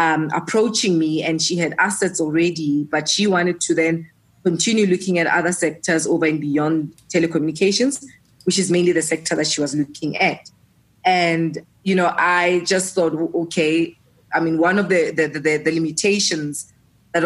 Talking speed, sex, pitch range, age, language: 170 wpm, female, 155-180 Hz, 20-39, English